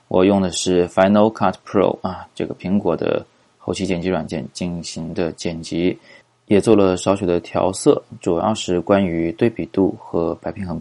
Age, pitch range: 20-39, 85-105 Hz